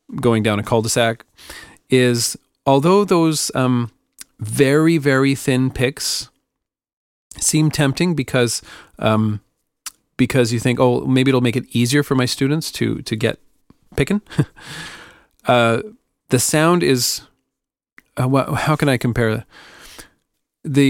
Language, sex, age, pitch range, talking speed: English, male, 40-59, 115-145 Hz, 125 wpm